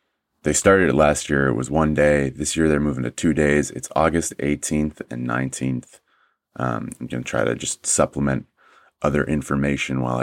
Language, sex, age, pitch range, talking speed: English, male, 30-49, 65-75 Hz, 190 wpm